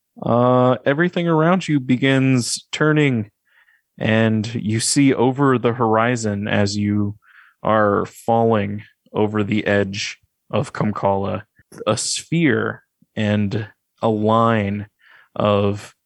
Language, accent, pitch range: English, American, 100-115 Hz